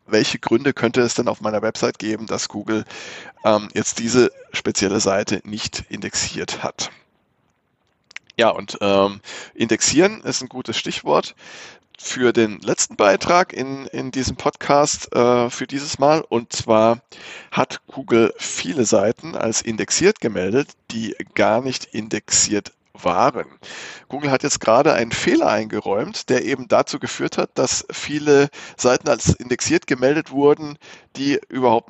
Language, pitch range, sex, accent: German, 105-135 Hz, male, German